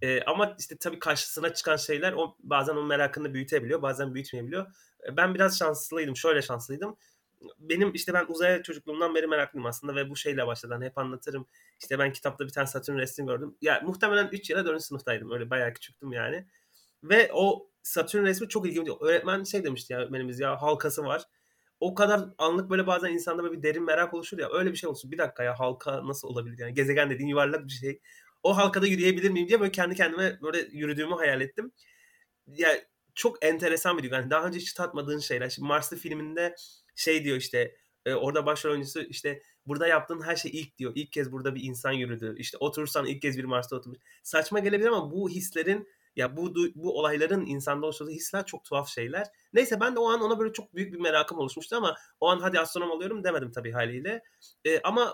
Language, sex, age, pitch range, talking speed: Turkish, male, 30-49, 140-190 Hz, 200 wpm